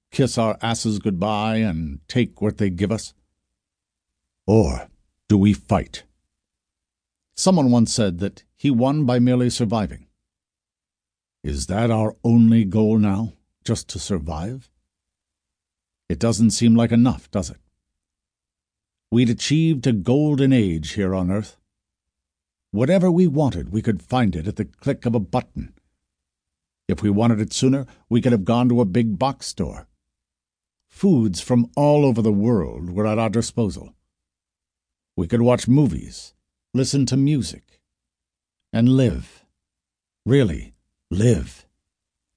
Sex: male